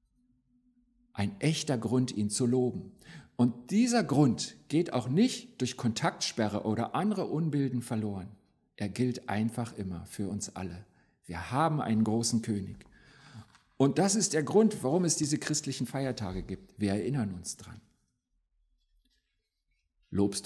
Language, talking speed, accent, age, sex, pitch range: German, 135 wpm, German, 50-69, male, 110-175 Hz